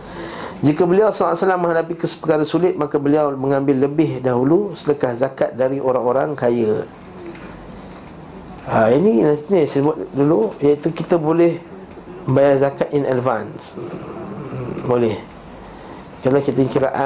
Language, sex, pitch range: Malay, male, 130-165 Hz